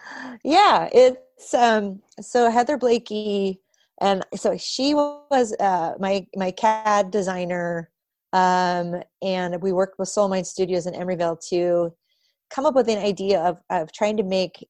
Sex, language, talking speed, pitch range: female, English, 145 wpm, 185-230 Hz